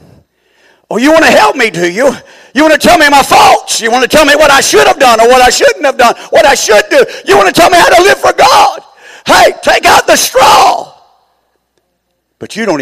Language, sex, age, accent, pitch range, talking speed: English, male, 50-69, American, 255-370 Hz, 250 wpm